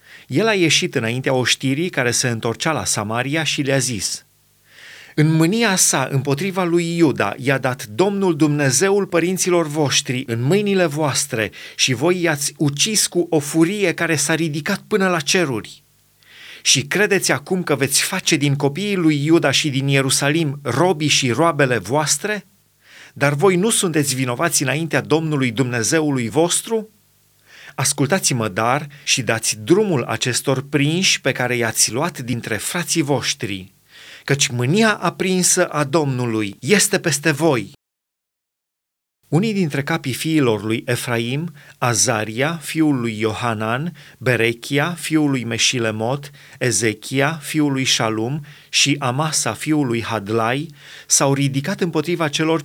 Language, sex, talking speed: Romanian, male, 130 wpm